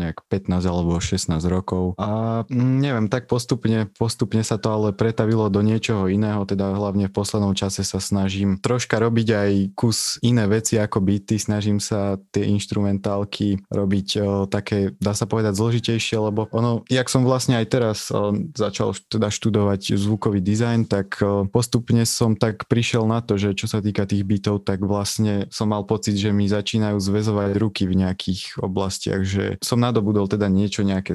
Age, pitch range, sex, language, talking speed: 20-39, 95-110 Hz, male, Slovak, 170 wpm